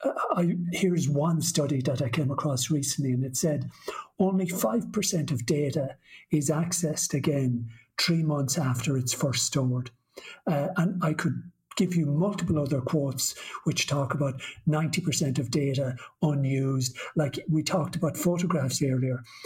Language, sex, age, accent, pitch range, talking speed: English, male, 60-79, British, 145-180 Hz, 140 wpm